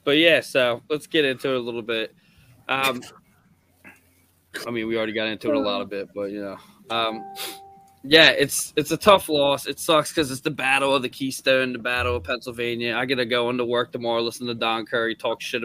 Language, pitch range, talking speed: English, 115-135 Hz, 220 wpm